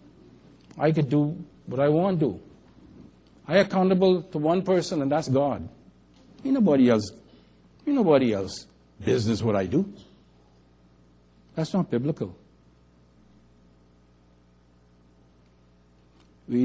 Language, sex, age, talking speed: English, male, 60-79, 95 wpm